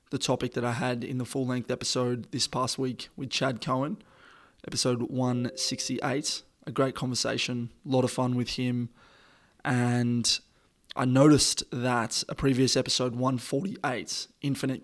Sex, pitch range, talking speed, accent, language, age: male, 125-135 Hz, 140 wpm, Australian, English, 20-39